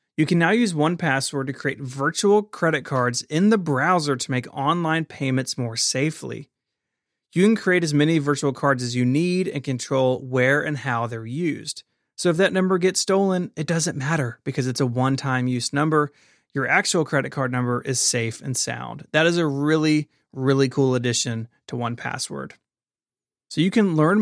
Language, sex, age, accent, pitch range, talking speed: English, male, 30-49, American, 130-160 Hz, 180 wpm